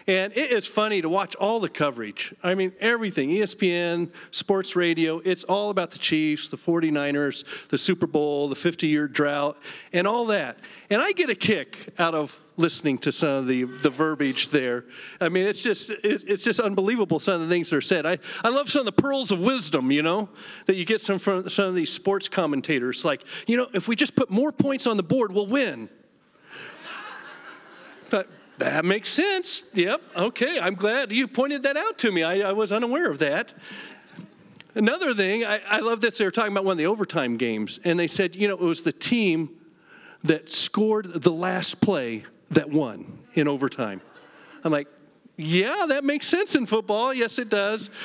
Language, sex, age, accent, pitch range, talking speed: English, male, 40-59, American, 160-225 Hz, 200 wpm